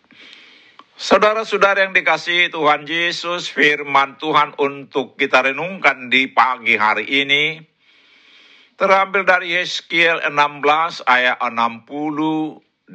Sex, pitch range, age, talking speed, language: male, 125-160 Hz, 60-79, 95 wpm, Indonesian